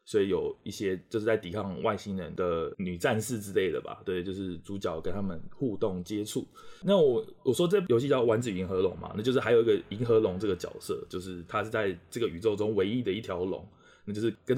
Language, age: Chinese, 20-39